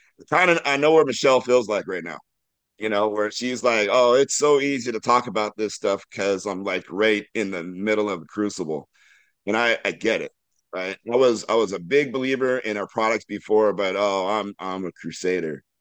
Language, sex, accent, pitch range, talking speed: English, male, American, 95-115 Hz, 215 wpm